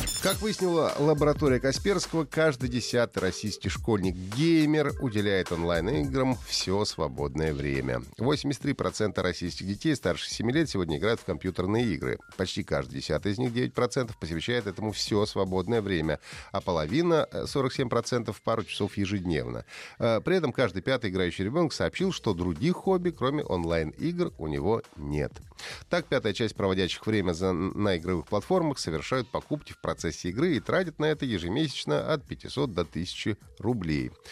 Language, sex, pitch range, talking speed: Russian, male, 95-145 Hz, 140 wpm